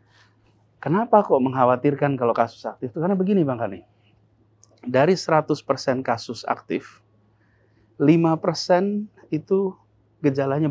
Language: Indonesian